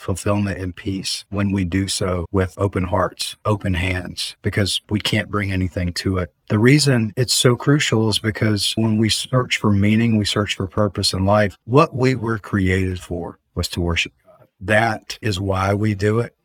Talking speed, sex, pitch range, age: 190 wpm, male, 90-105 Hz, 50-69